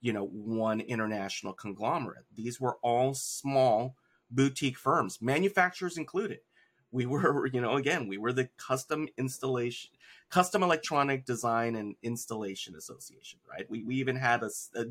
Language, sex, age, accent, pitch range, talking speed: English, male, 30-49, American, 105-135 Hz, 145 wpm